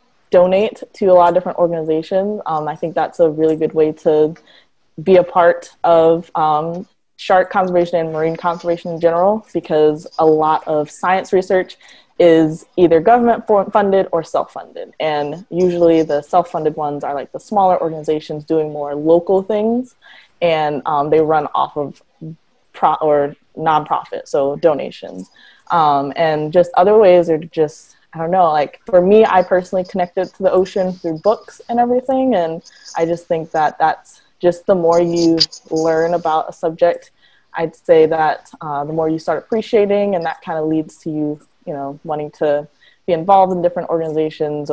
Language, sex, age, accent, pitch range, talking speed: English, female, 20-39, American, 155-185 Hz, 175 wpm